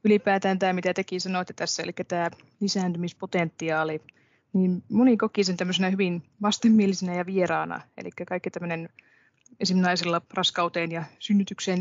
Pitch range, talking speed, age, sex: 170-190 Hz, 125 wpm, 20-39, female